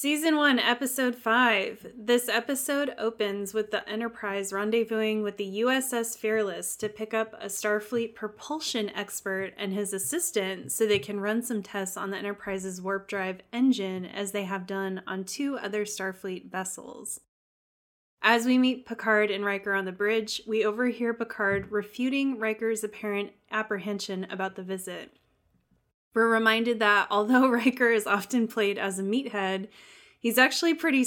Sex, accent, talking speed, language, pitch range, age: female, American, 155 wpm, English, 200-235 Hz, 20-39